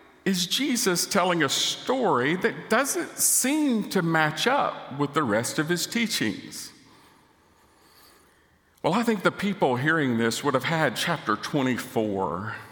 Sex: male